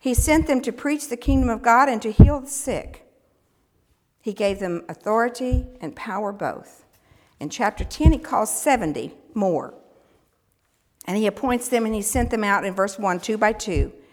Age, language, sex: 50-69, English, female